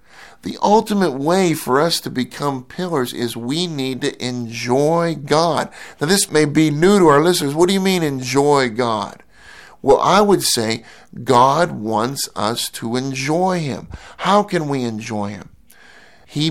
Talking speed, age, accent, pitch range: 160 wpm, 50-69, American, 125-160 Hz